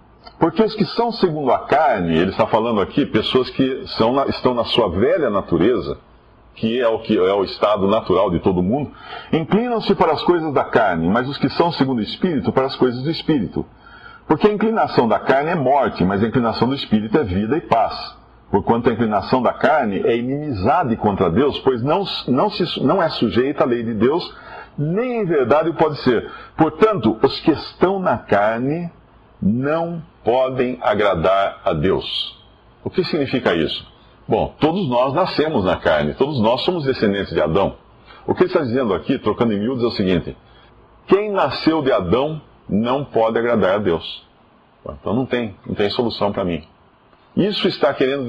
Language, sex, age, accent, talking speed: Portuguese, male, 50-69, Brazilian, 185 wpm